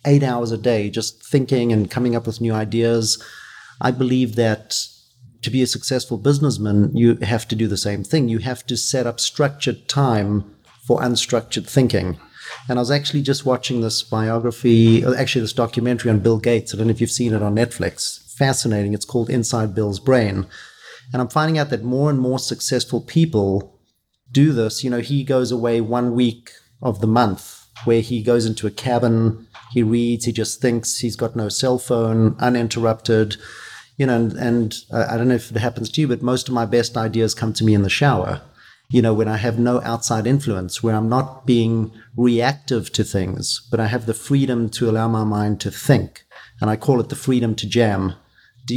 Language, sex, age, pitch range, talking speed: English, male, 40-59, 110-125 Hz, 200 wpm